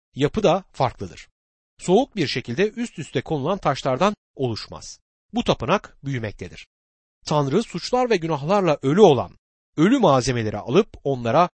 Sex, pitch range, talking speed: male, 115-195 Hz, 125 wpm